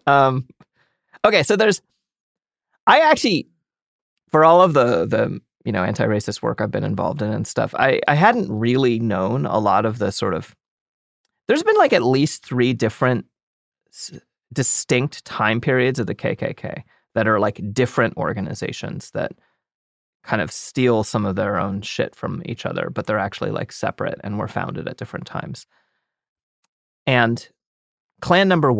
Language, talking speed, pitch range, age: English, 160 wpm, 110-155 Hz, 30-49